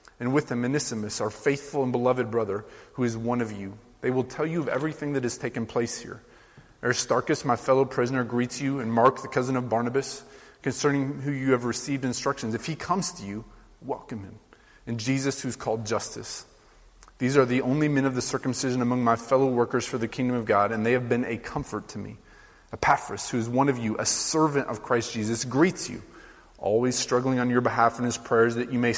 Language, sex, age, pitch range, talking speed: English, male, 30-49, 115-135 Hz, 215 wpm